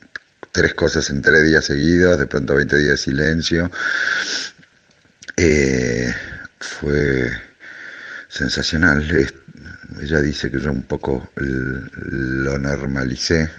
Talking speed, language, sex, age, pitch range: 100 wpm, Spanish, male, 60-79, 65-75 Hz